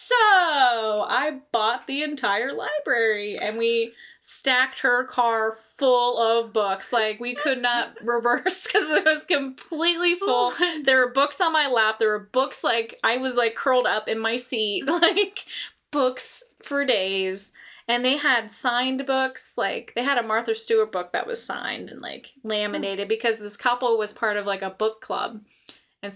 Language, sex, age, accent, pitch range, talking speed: English, female, 20-39, American, 205-255 Hz, 170 wpm